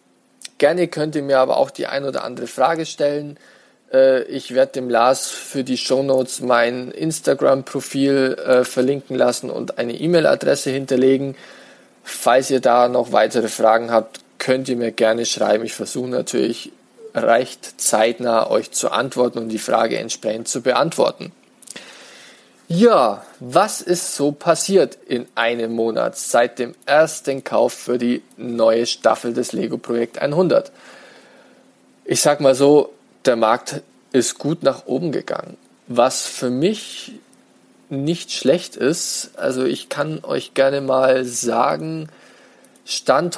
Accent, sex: German, male